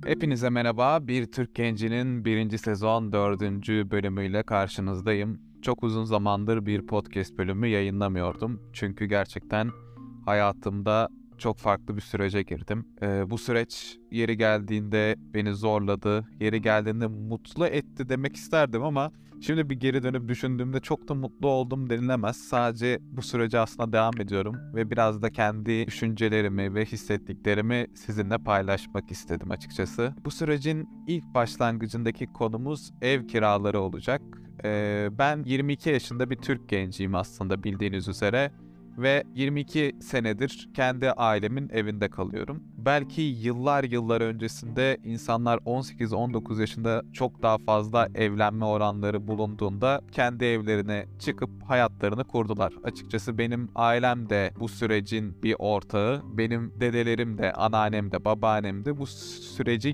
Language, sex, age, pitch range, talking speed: Turkish, male, 20-39, 105-125 Hz, 125 wpm